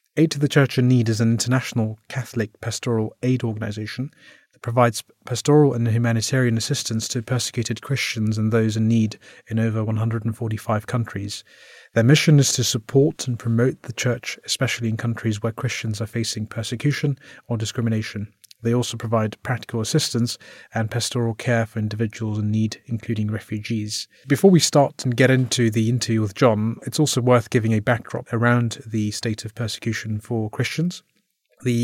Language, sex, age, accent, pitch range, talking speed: English, male, 30-49, British, 110-125 Hz, 165 wpm